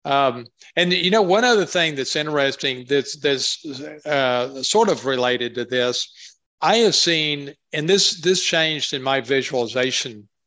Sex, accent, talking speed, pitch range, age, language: male, American, 155 wpm, 130-155 Hz, 50-69, English